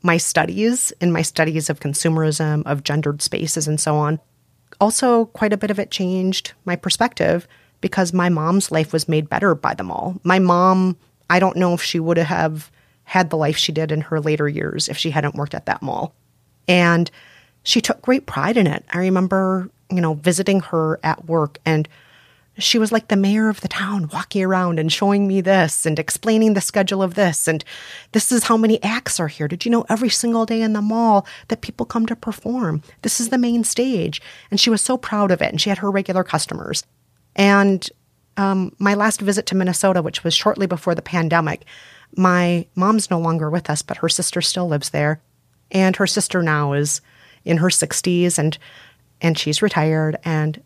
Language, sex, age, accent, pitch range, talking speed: English, female, 30-49, American, 160-200 Hz, 205 wpm